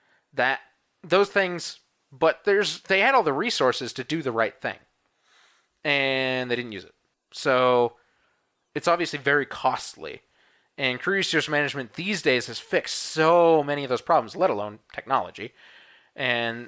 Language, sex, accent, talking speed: English, male, American, 150 wpm